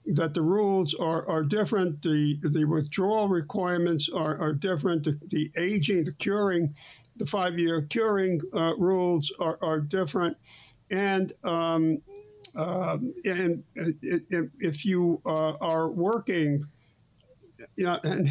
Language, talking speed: English, 135 wpm